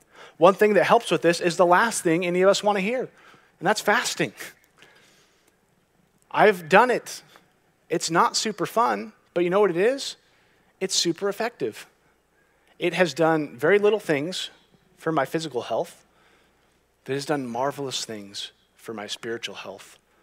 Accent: American